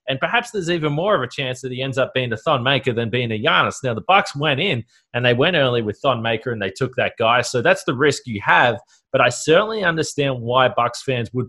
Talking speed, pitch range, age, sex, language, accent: 265 wpm, 115-140 Hz, 30-49, male, English, Australian